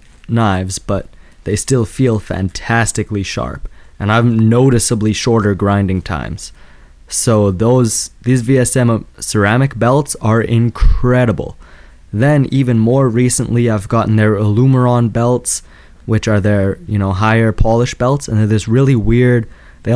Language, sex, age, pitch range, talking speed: English, male, 20-39, 100-120 Hz, 130 wpm